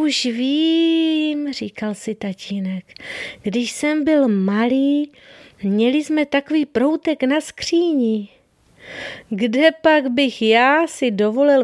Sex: female